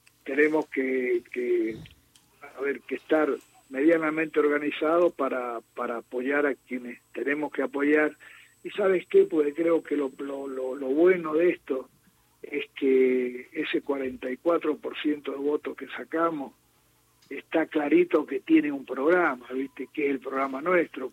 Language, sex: Spanish, male